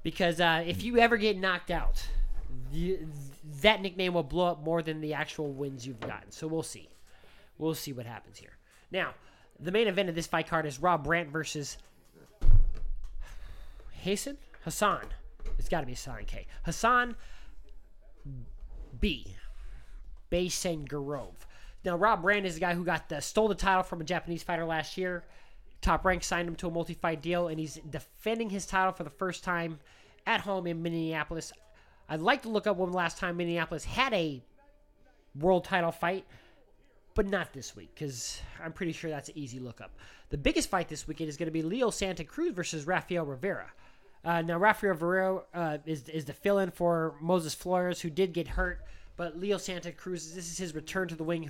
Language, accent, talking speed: English, American, 185 wpm